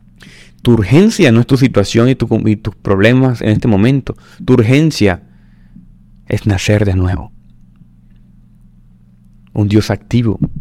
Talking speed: 130 wpm